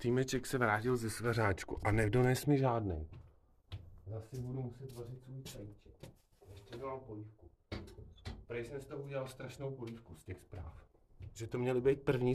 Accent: native